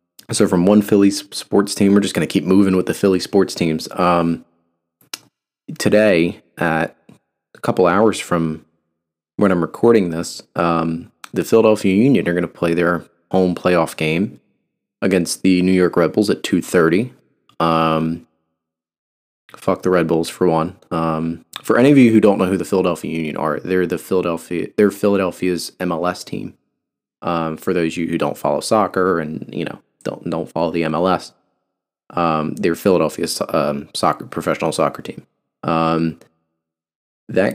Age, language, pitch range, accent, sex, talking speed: 30-49, English, 80-95 Hz, American, male, 165 wpm